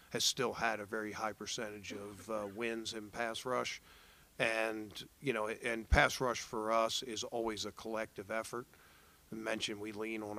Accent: American